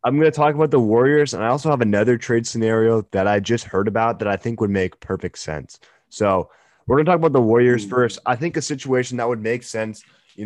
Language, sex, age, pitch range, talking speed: English, male, 20-39, 115-140 Hz, 250 wpm